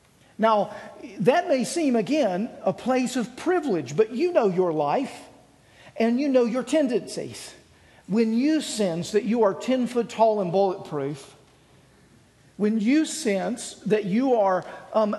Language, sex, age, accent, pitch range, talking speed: English, male, 50-69, American, 175-230 Hz, 145 wpm